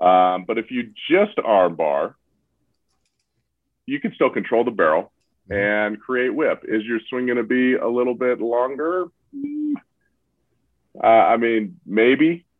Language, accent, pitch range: English, American, 90-110 Hz